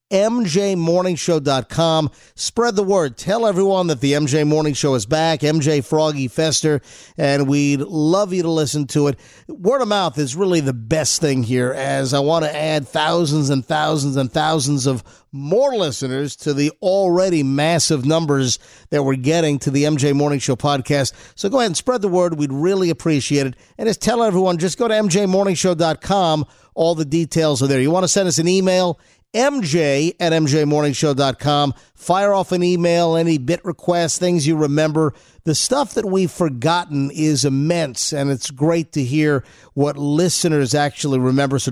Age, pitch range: 50-69, 145-175 Hz